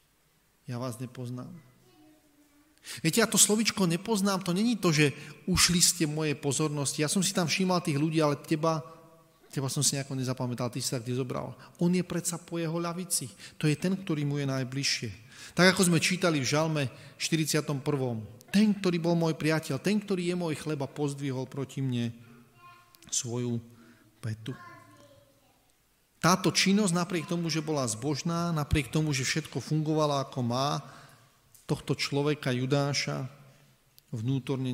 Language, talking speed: Slovak, 150 wpm